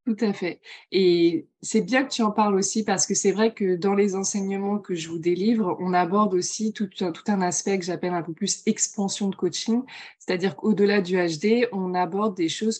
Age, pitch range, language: 20-39, 175-210 Hz, French